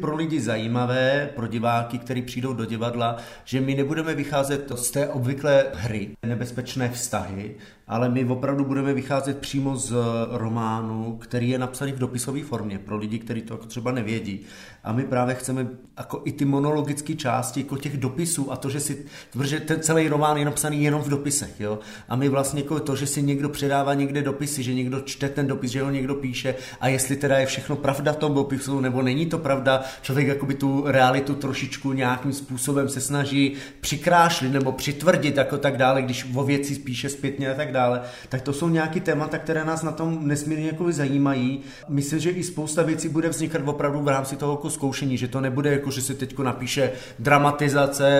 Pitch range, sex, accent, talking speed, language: 125-145 Hz, male, native, 195 wpm, Czech